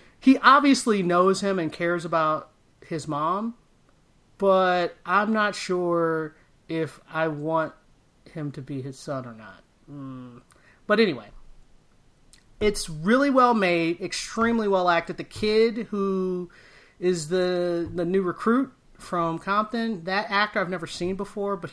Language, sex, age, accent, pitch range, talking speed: English, male, 30-49, American, 155-210 Hz, 140 wpm